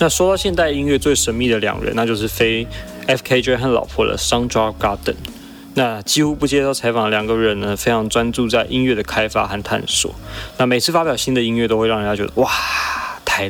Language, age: Chinese, 20-39